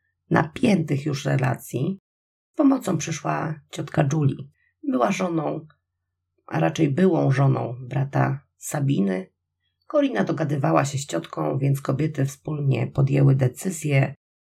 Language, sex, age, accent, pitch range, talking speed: Polish, female, 40-59, native, 130-165 Hz, 105 wpm